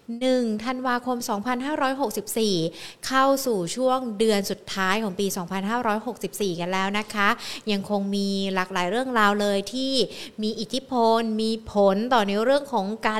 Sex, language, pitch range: female, Thai, 190-240 Hz